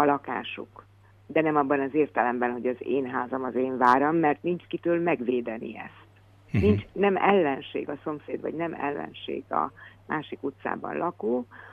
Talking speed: 160 wpm